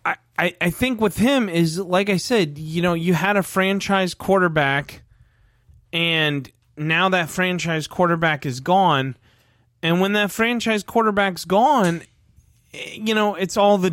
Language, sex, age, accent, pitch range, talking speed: English, male, 30-49, American, 145-210 Hz, 145 wpm